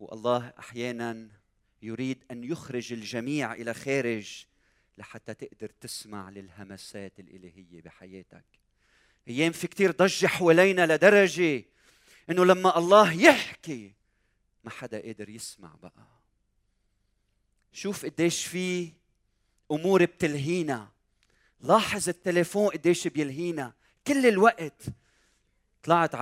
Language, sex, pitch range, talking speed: Arabic, male, 105-165 Hz, 95 wpm